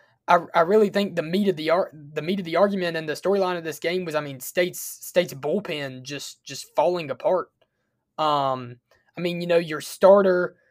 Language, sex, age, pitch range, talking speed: English, male, 20-39, 150-190 Hz, 205 wpm